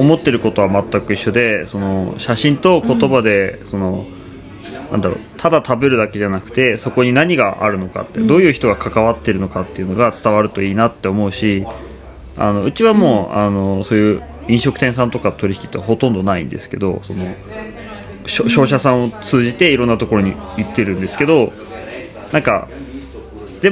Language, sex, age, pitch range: Japanese, male, 20-39, 100-150 Hz